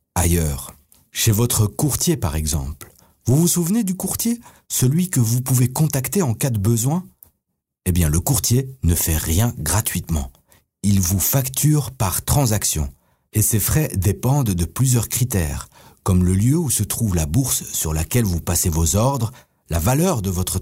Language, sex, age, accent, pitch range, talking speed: French, male, 50-69, French, 90-135 Hz, 170 wpm